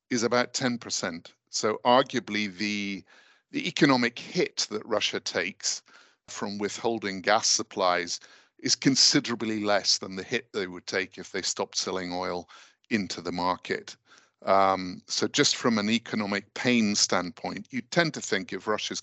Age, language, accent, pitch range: 50-69, English, British, 95-115 Hz